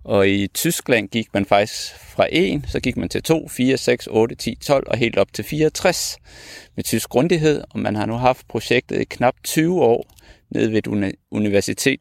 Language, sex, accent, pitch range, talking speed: Danish, male, native, 105-135 Hz, 200 wpm